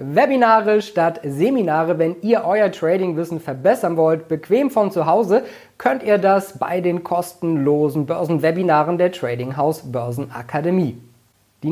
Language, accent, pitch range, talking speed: German, German, 140-195 Hz, 130 wpm